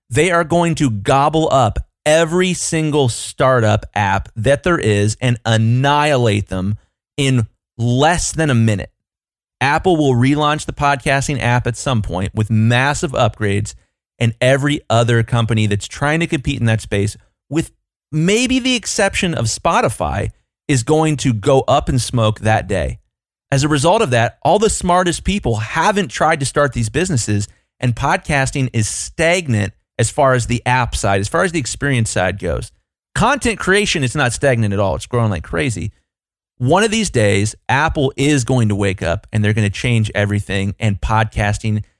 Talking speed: 170 wpm